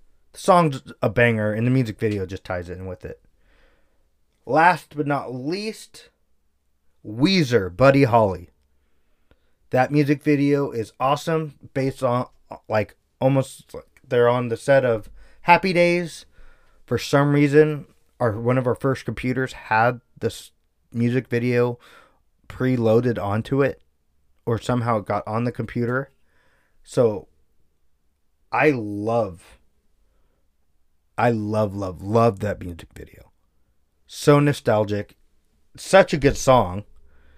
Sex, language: male, English